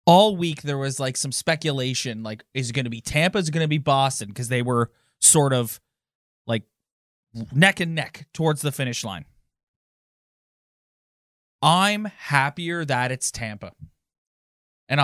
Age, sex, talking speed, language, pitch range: 20-39, male, 150 wpm, English, 125-160 Hz